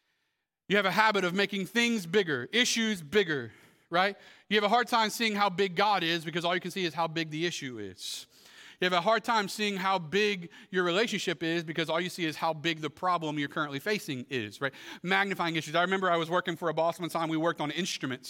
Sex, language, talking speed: male, English, 240 wpm